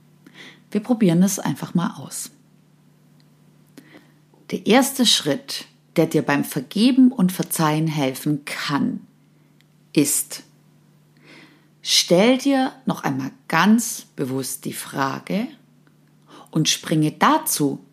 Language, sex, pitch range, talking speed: German, female, 160-230 Hz, 95 wpm